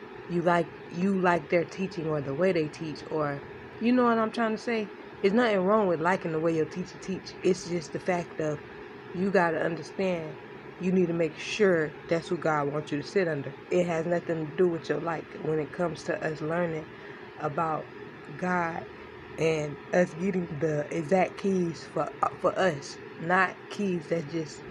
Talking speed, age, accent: 195 wpm, 20-39, American